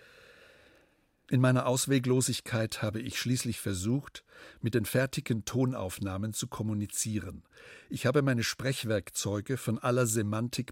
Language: German